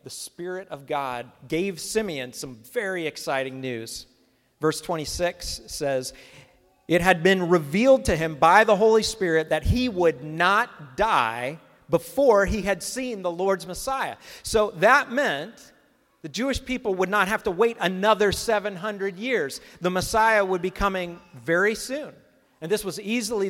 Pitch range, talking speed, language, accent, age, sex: 135-190 Hz, 155 wpm, English, American, 40-59, male